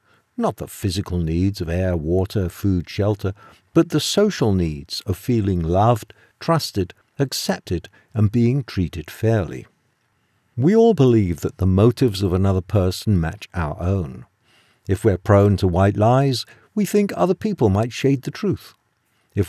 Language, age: English, 50-69